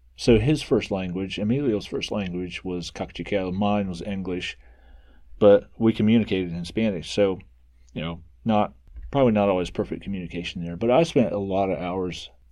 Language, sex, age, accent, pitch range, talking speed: English, male, 30-49, American, 80-100 Hz, 165 wpm